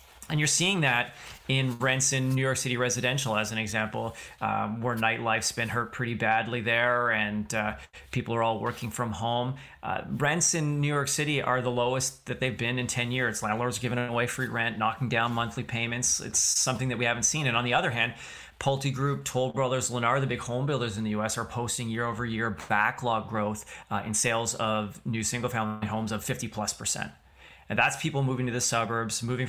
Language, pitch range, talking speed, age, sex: English, 110-130 Hz, 205 wpm, 30-49, male